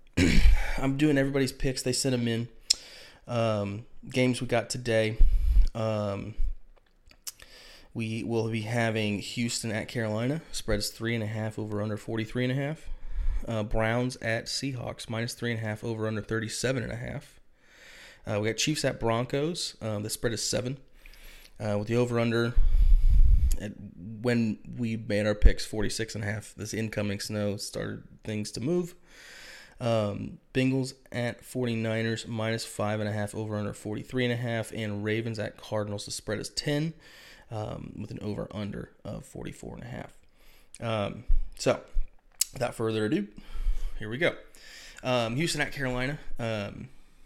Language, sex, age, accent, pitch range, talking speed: English, male, 20-39, American, 105-125 Hz, 120 wpm